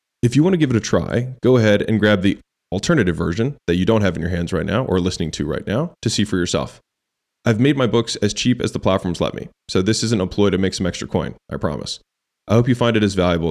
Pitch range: 85-110 Hz